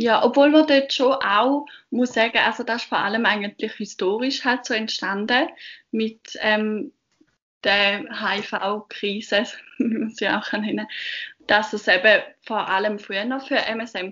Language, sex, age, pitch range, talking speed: German, female, 20-39, 195-230 Hz, 150 wpm